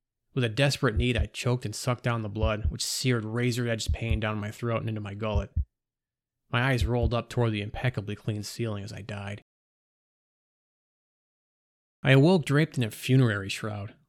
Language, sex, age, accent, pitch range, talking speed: English, male, 30-49, American, 105-125 Hz, 175 wpm